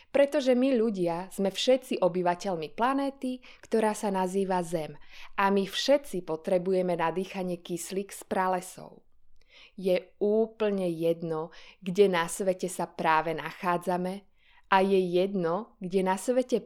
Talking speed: 125 wpm